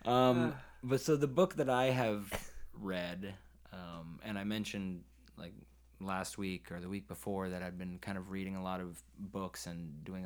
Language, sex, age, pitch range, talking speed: English, male, 20-39, 85-100 Hz, 185 wpm